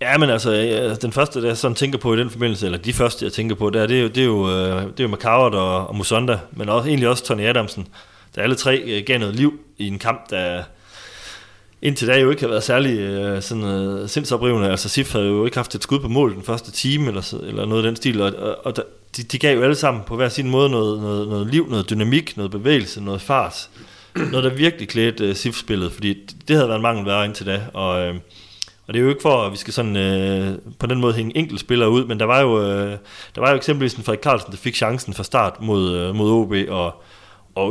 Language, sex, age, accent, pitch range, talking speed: Danish, male, 30-49, native, 100-125 Hz, 250 wpm